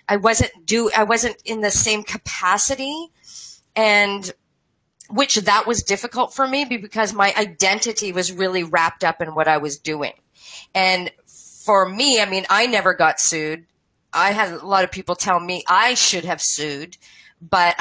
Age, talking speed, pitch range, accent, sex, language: 40-59, 170 wpm, 170-205 Hz, American, female, English